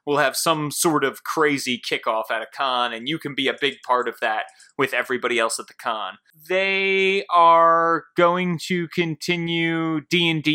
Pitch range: 150-200 Hz